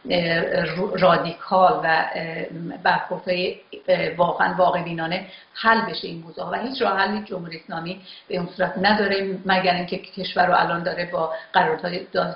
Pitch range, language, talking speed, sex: 175-205 Hz, Persian, 140 wpm, female